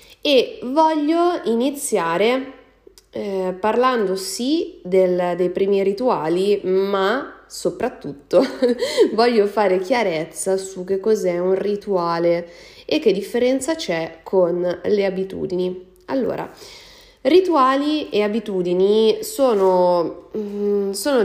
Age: 20-39